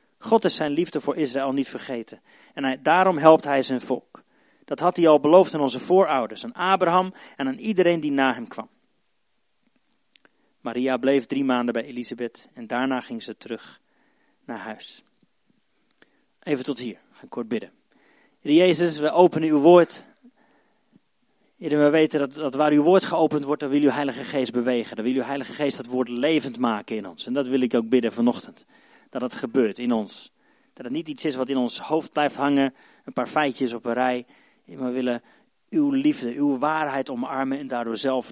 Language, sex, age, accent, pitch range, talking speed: Dutch, male, 40-59, Dutch, 125-170 Hz, 190 wpm